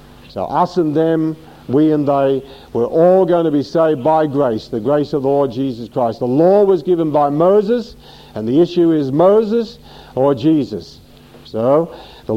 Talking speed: 180 wpm